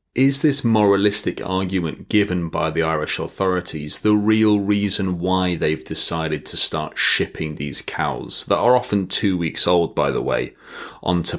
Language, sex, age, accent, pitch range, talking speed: English, male, 30-49, British, 85-105 Hz, 160 wpm